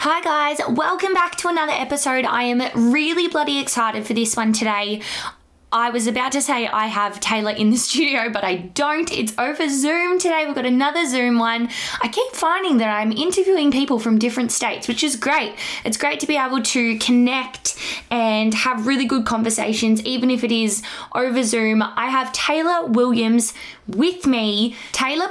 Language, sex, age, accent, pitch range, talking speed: English, female, 20-39, Australian, 215-270 Hz, 185 wpm